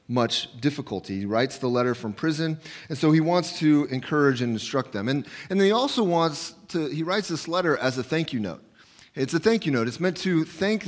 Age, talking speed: 30-49, 225 wpm